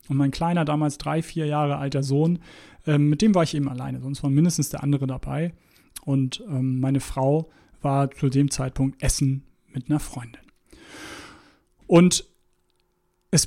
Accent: German